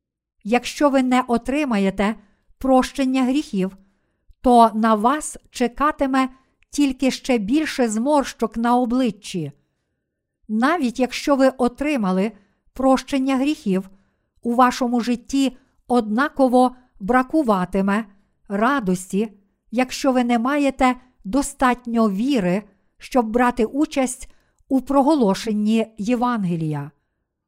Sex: female